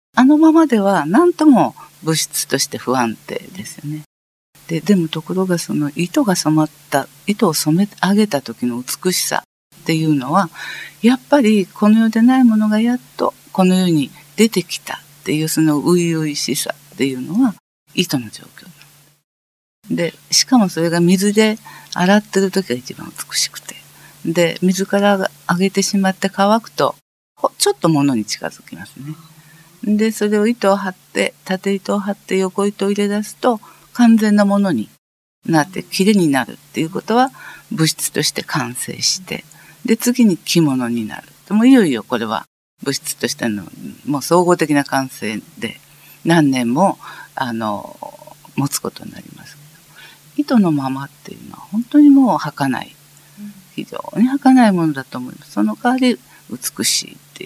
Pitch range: 150-215 Hz